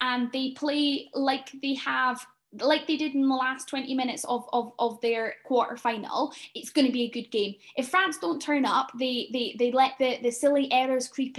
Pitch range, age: 235-275 Hz, 10-29